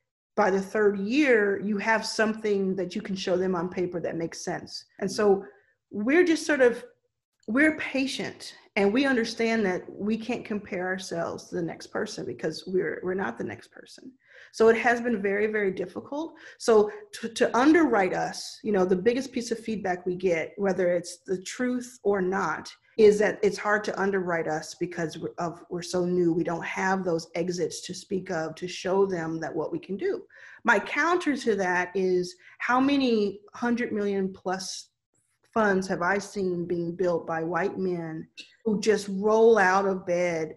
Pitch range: 180-215 Hz